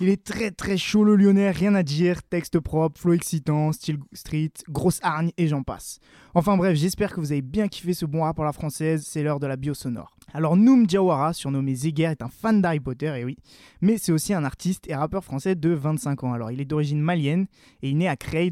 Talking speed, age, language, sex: 245 wpm, 20-39, French, male